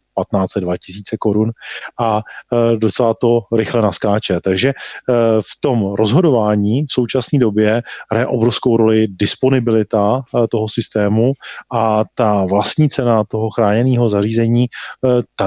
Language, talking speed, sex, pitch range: Czech, 115 wpm, male, 110-130 Hz